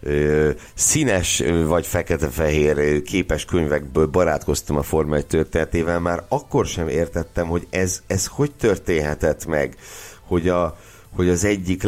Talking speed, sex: 125 wpm, male